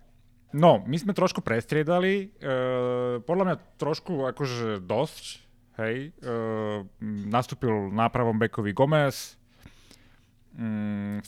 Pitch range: 110-135 Hz